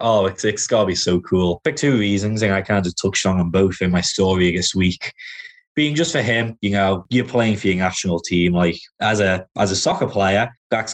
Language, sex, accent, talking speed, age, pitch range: English, male, British, 235 wpm, 20-39, 95-110 Hz